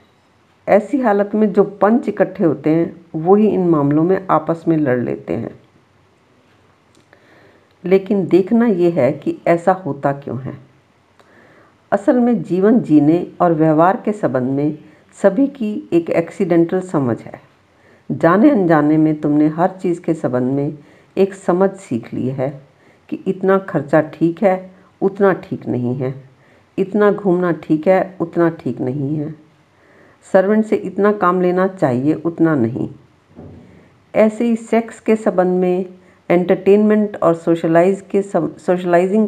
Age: 50-69